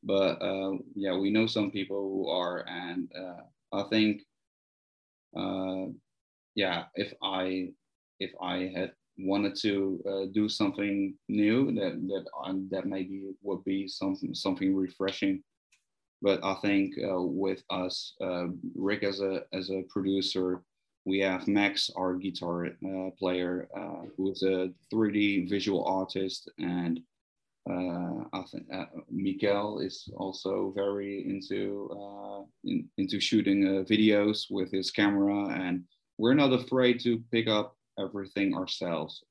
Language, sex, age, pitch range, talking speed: English, male, 20-39, 95-105 Hz, 135 wpm